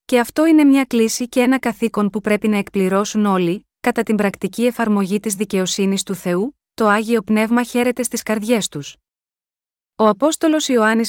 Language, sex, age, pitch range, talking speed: Greek, female, 30-49, 195-245 Hz, 170 wpm